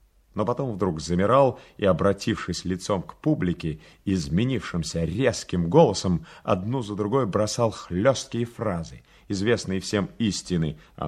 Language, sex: Russian, male